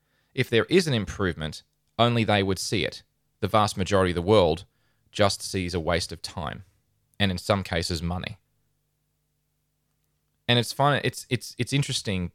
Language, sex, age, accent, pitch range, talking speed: English, male, 20-39, Australian, 90-110 Hz, 165 wpm